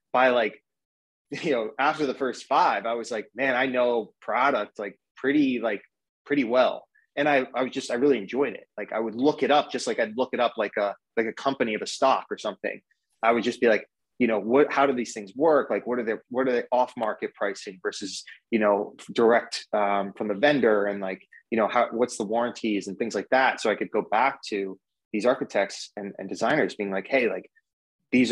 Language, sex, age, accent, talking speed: English, male, 20-39, American, 235 wpm